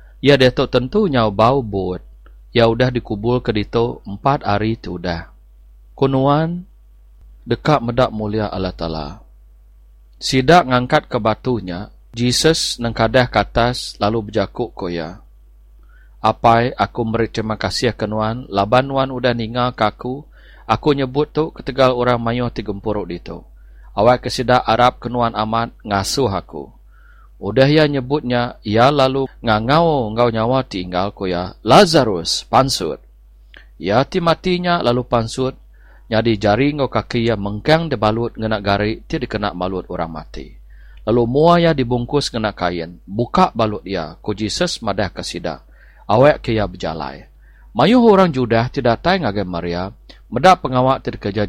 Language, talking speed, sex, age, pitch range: English, 135 wpm, male, 40-59, 95-125 Hz